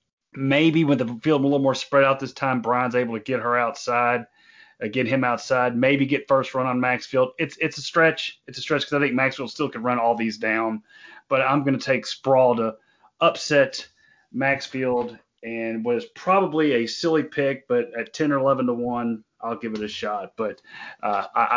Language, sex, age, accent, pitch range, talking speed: English, male, 30-49, American, 120-155 Hz, 205 wpm